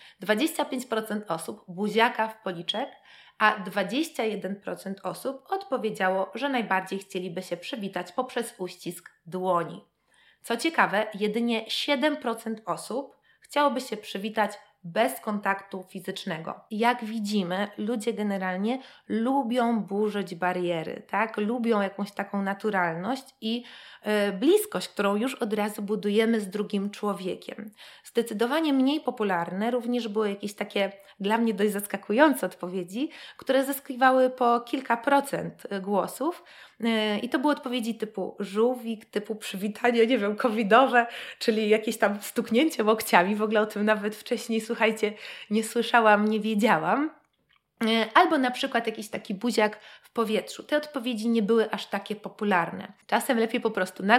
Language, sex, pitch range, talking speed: Polish, female, 205-245 Hz, 125 wpm